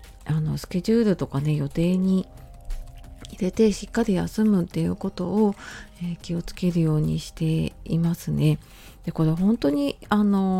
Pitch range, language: 150-185 Hz, Japanese